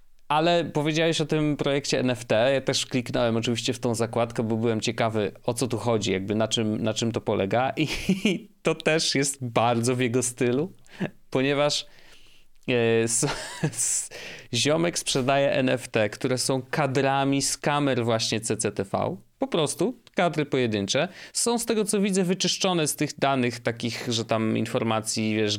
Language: Polish